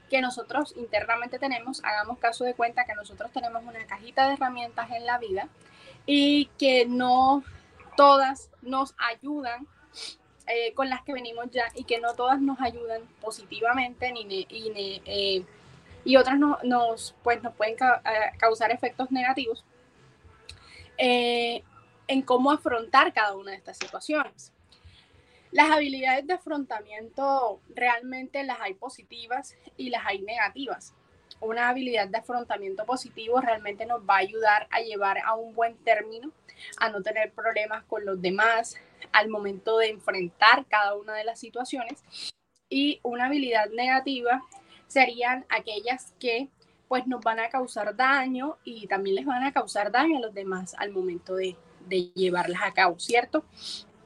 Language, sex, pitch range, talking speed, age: Spanish, female, 215-260 Hz, 145 wpm, 10-29